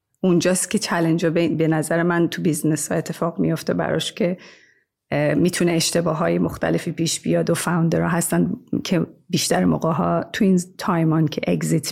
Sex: female